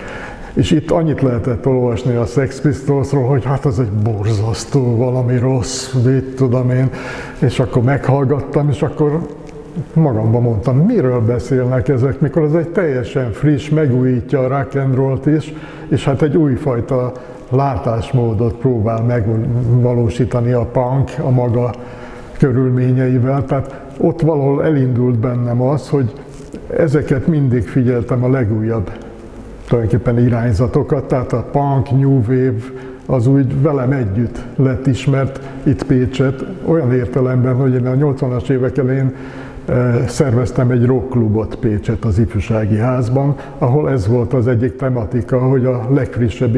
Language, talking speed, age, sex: Hungarian, 130 wpm, 60-79, male